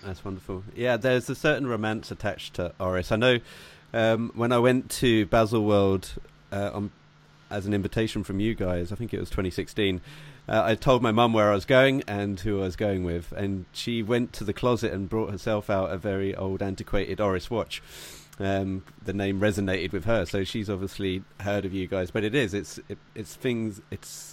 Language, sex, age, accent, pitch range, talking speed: English, male, 30-49, British, 100-130 Hz, 205 wpm